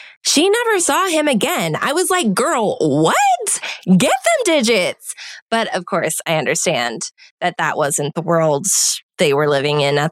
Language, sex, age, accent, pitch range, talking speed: English, female, 20-39, American, 175-240 Hz, 165 wpm